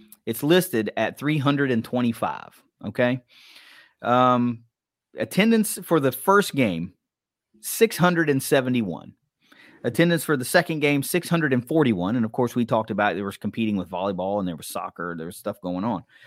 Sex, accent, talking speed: male, American, 140 wpm